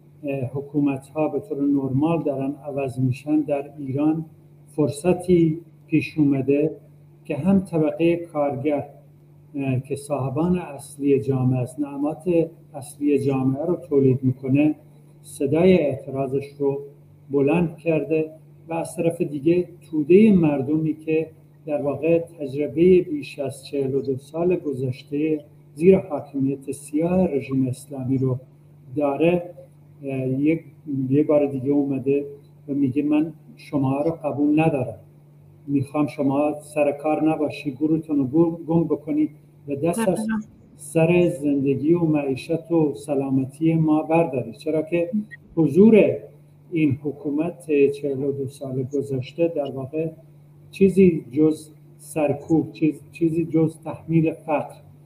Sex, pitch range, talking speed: male, 140-160 Hz, 110 wpm